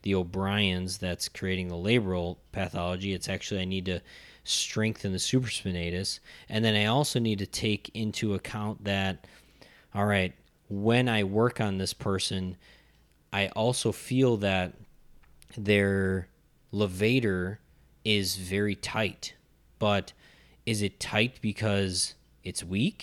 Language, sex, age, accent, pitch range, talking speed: English, male, 20-39, American, 95-120 Hz, 130 wpm